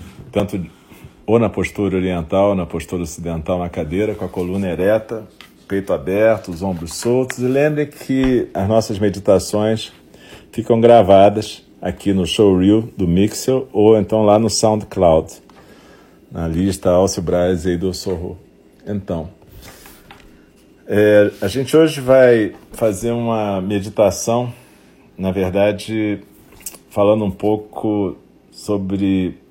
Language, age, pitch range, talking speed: Portuguese, 40-59, 90-105 Hz, 120 wpm